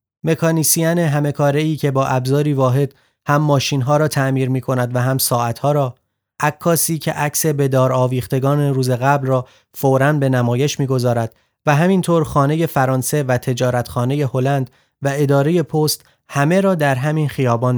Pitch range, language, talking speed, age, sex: 130-150 Hz, Persian, 150 wpm, 30-49, male